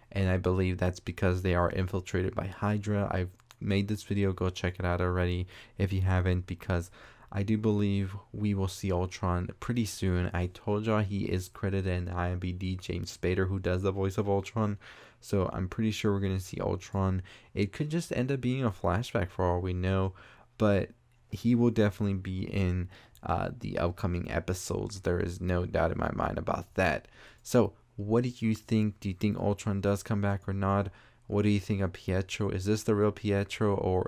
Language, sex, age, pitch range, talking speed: English, male, 20-39, 90-105 Hz, 200 wpm